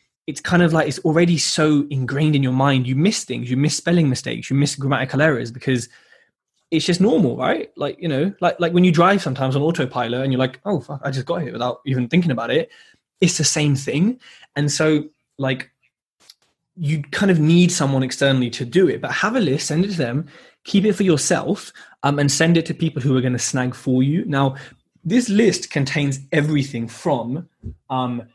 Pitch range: 135-170 Hz